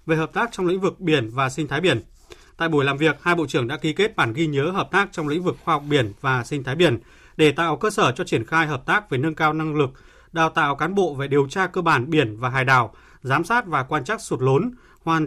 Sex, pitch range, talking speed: male, 140-180 Hz, 280 wpm